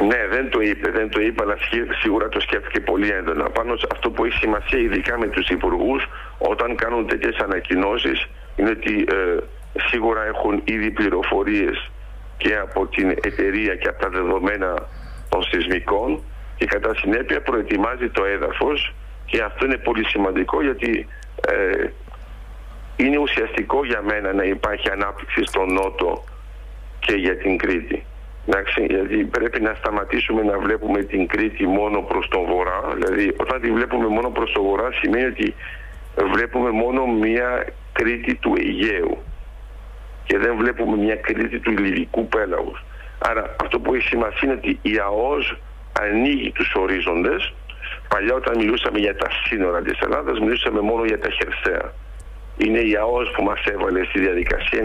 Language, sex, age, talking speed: Greek, male, 50-69, 155 wpm